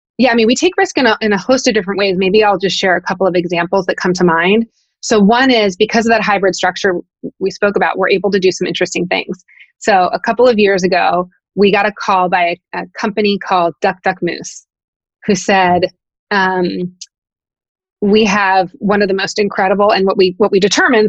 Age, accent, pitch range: 20-39, American, 185-220 Hz